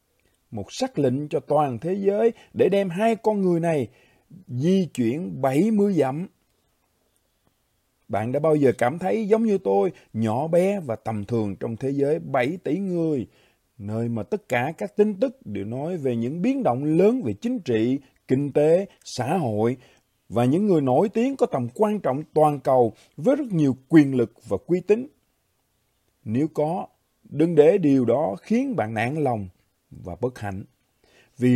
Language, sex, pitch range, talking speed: Vietnamese, male, 120-190 Hz, 175 wpm